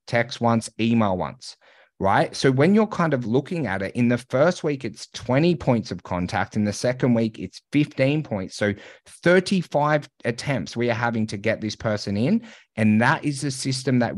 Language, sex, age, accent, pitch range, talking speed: English, male, 30-49, Australian, 100-125 Hz, 195 wpm